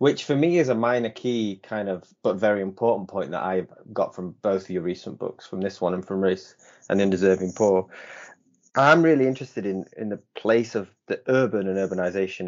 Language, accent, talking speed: English, British, 210 wpm